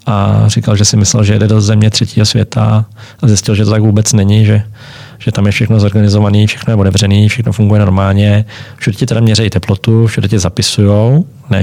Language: Czech